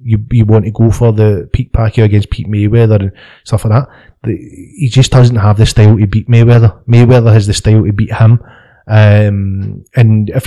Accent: British